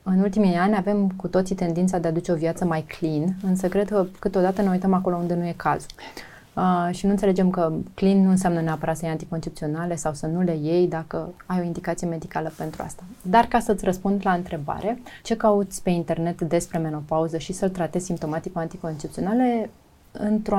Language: Romanian